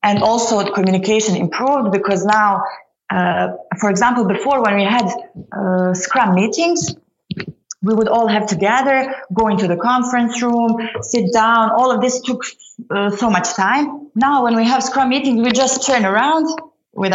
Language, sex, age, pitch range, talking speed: English, female, 30-49, 195-255 Hz, 170 wpm